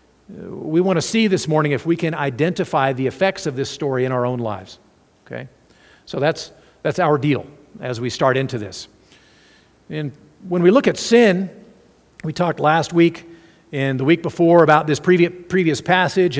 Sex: male